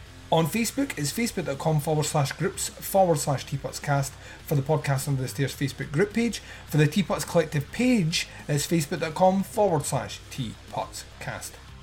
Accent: British